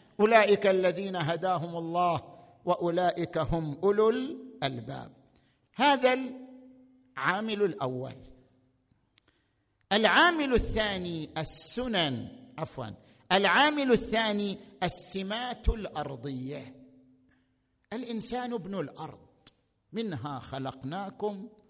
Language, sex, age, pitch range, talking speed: Arabic, male, 50-69, 150-225 Hz, 65 wpm